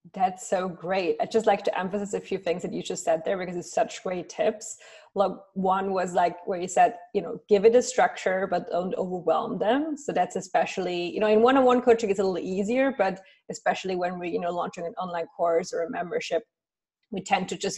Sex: female